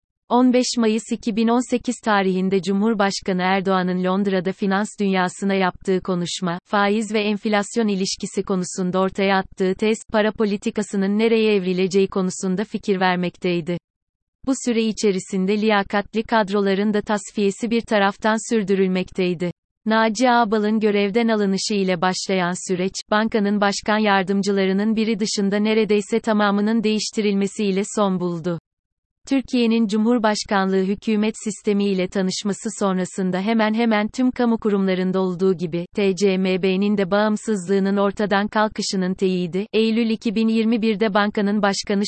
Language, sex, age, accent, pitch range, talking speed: Turkish, female, 30-49, native, 190-215 Hz, 110 wpm